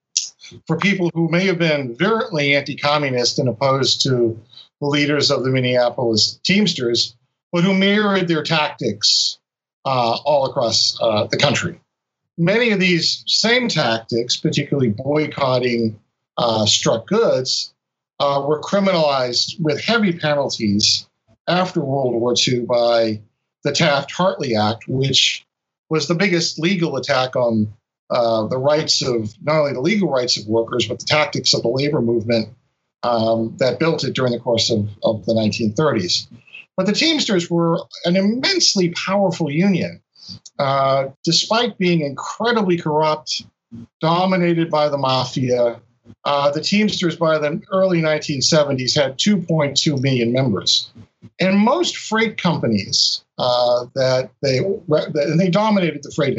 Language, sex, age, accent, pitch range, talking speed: English, male, 50-69, American, 120-170 Hz, 135 wpm